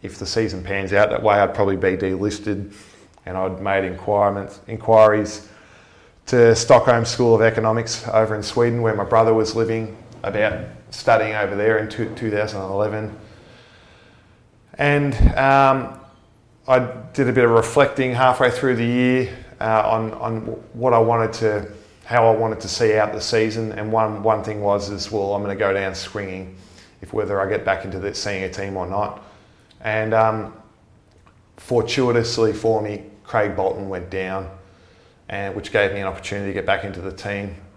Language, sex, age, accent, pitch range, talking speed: English, male, 20-39, Australian, 100-115 Hz, 170 wpm